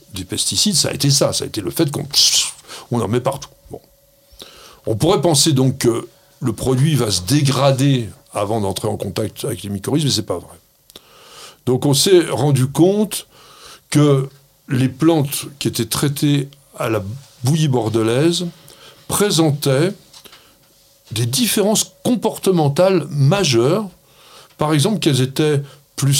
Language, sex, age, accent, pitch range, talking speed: French, male, 60-79, French, 120-155 Hz, 140 wpm